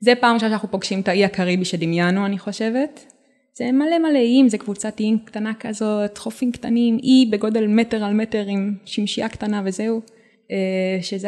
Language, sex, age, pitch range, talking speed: Hebrew, female, 20-39, 205-255 Hz, 170 wpm